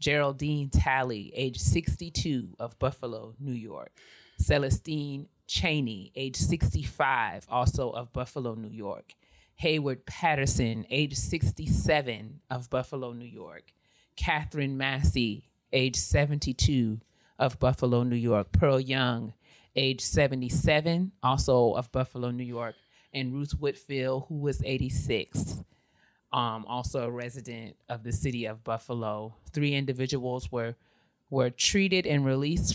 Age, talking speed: 30-49, 115 wpm